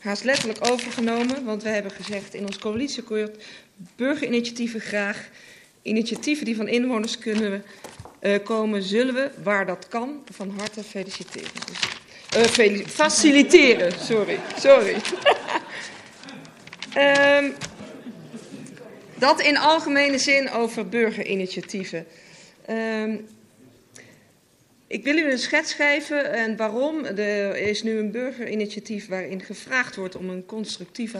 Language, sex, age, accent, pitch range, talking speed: Dutch, female, 40-59, Dutch, 195-235 Hz, 115 wpm